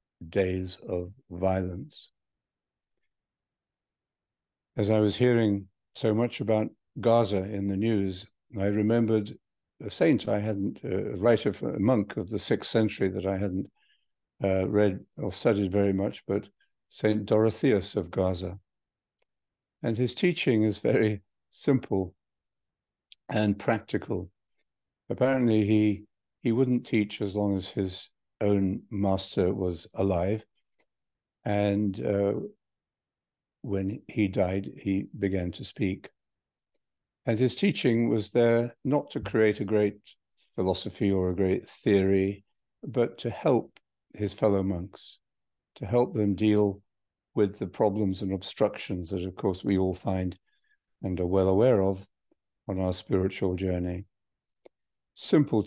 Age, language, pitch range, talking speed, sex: 60-79, English, 95-110 Hz, 130 wpm, male